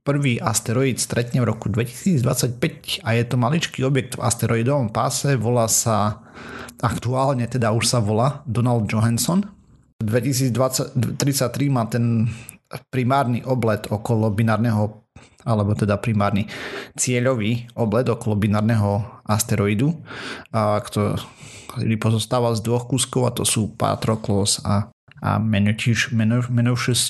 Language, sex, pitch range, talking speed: Slovak, male, 105-125 Hz, 115 wpm